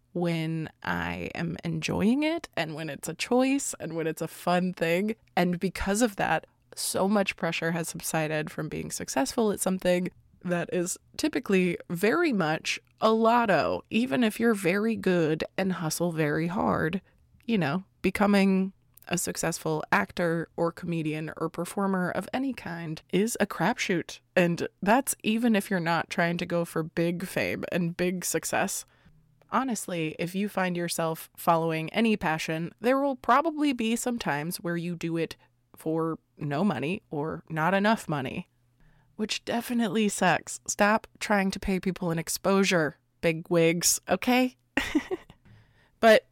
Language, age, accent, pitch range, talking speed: English, 20-39, American, 160-205 Hz, 150 wpm